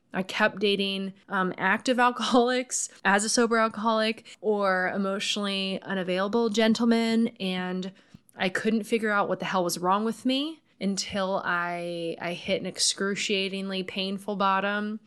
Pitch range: 185-230 Hz